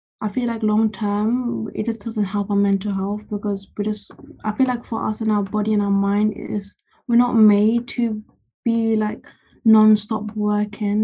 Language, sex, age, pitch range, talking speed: English, female, 10-29, 205-225 Hz, 185 wpm